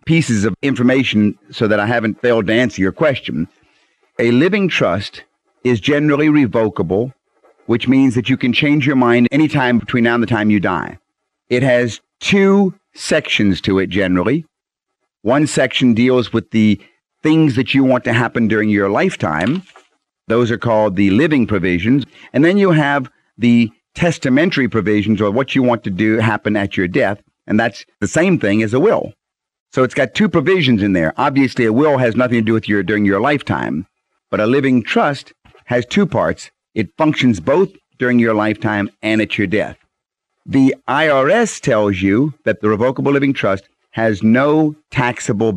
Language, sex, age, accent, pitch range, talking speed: English, male, 50-69, American, 110-140 Hz, 180 wpm